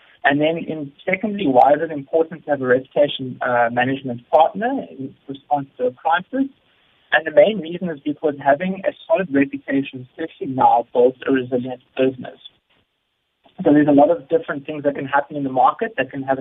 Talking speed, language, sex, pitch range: 190 wpm, English, male, 130-165 Hz